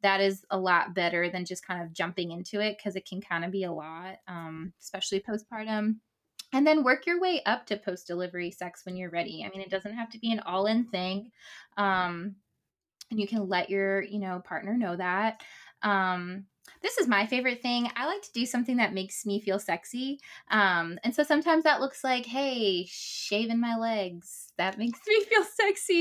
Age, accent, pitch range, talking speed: 20-39, American, 185-235 Hz, 210 wpm